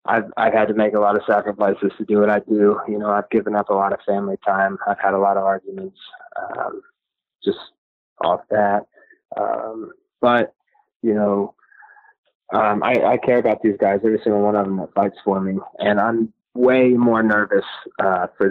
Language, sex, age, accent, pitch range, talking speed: English, male, 20-39, American, 100-115 Hz, 200 wpm